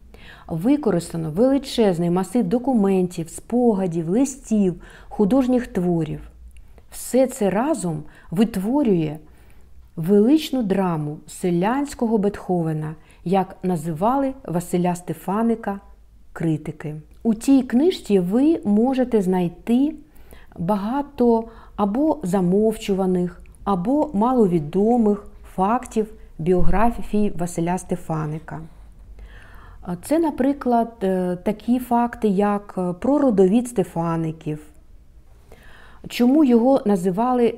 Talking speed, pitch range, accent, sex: 75 wpm, 175-235 Hz, native, female